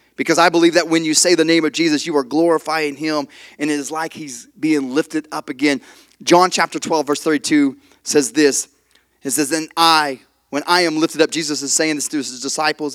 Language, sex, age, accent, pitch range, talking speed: English, male, 30-49, American, 145-185 Hz, 220 wpm